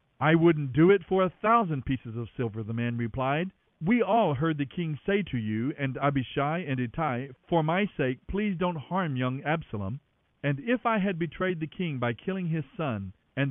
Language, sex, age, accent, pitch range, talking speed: English, male, 50-69, American, 120-185 Hz, 200 wpm